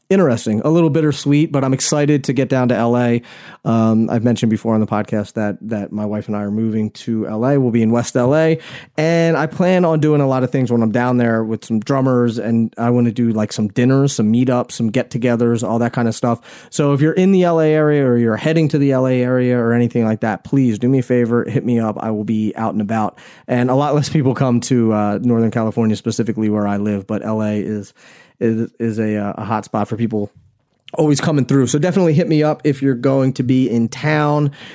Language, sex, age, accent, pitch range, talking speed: English, male, 30-49, American, 115-140 Hz, 245 wpm